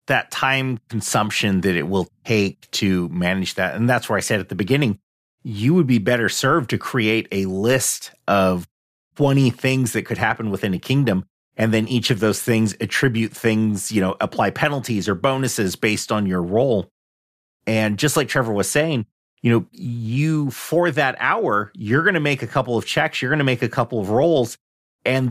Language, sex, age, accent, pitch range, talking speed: English, male, 30-49, American, 100-130 Hz, 195 wpm